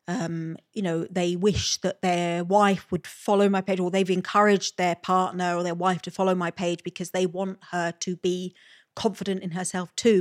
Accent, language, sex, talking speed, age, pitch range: British, English, female, 200 wpm, 30-49, 175-205 Hz